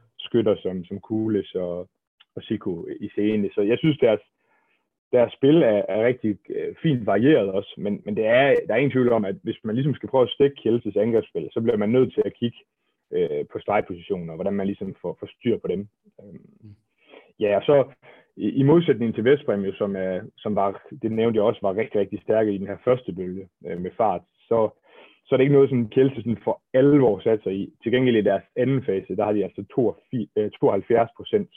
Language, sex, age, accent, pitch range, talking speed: Danish, male, 30-49, native, 100-125 Hz, 210 wpm